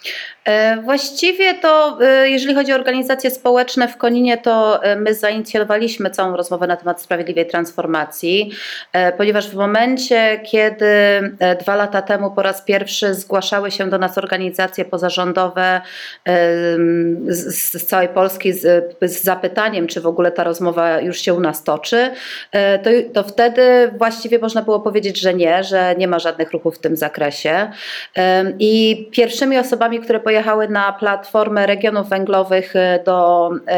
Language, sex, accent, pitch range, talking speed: Polish, female, native, 175-215 Hz, 135 wpm